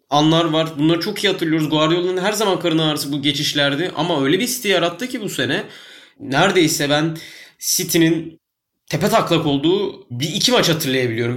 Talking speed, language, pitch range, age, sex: 165 wpm, Turkish, 135-165 Hz, 30-49, male